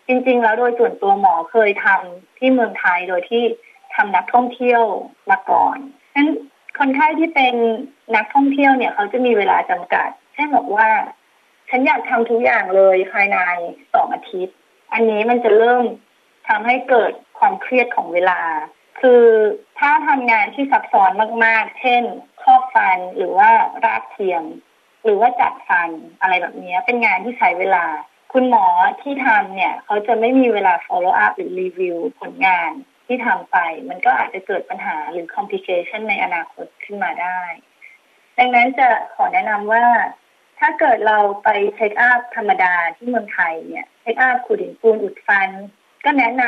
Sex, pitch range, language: female, 205-305 Hz, Thai